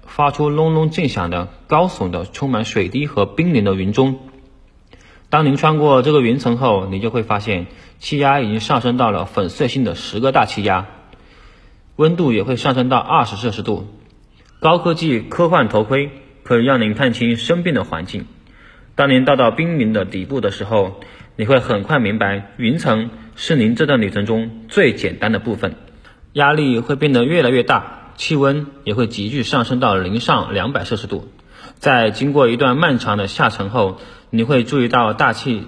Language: Chinese